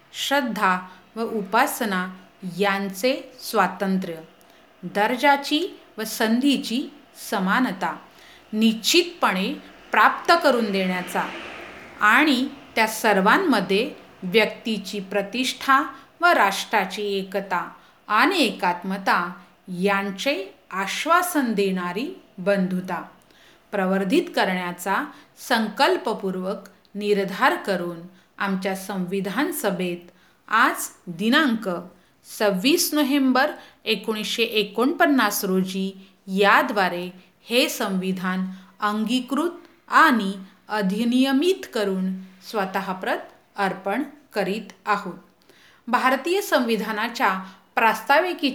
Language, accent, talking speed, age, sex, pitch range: Hindi, native, 70 wpm, 40-59, female, 195-270 Hz